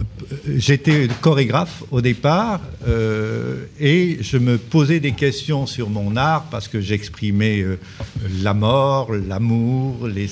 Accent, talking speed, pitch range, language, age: French, 120 wpm, 110-145 Hz, French, 50-69